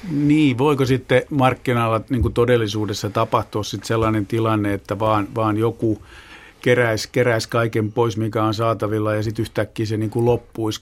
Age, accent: 50-69, native